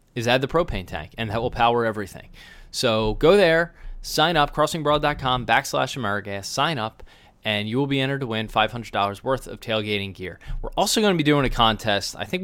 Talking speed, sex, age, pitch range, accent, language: 205 wpm, male, 20-39, 105-135 Hz, American, English